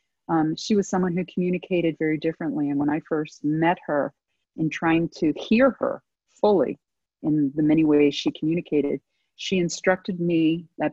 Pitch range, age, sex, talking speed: 150-175 Hz, 40-59, female, 165 wpm